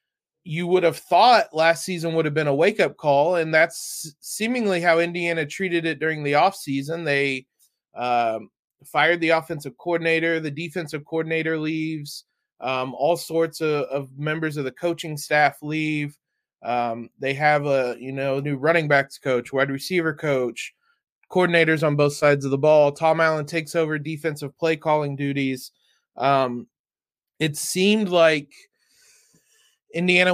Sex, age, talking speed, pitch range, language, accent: male, 20-39, 145 wpm, 140-165 Hz, English, American